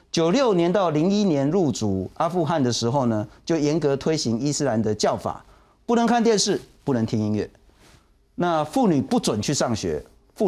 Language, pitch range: Chinese, 105-155 Hz